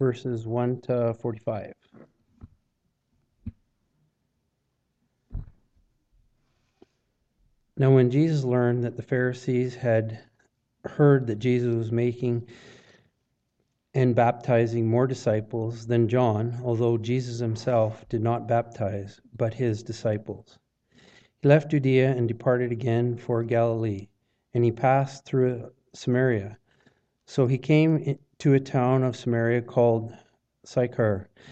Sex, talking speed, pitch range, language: male, 105 wpm, 115-130 Hz, English